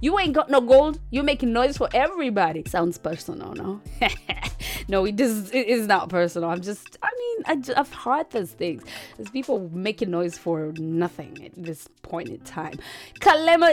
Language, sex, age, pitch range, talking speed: English, female, 20-39, 175-260 Hz, 185 wpm